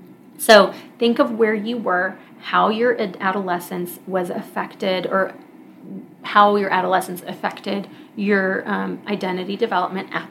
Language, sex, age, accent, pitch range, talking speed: English, female, 30-49, American, 180-230 Hz, 120 wpm